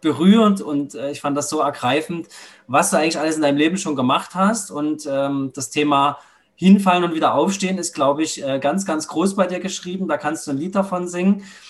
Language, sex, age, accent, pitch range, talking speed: German, male, 20-39, German, 140-175 Hz, 210 wpm